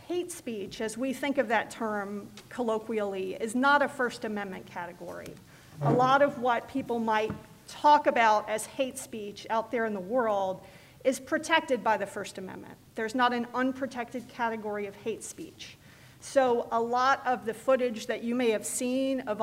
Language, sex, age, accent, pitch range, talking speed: English, female, 40-59, American, 215-250 Hz, 175 wpm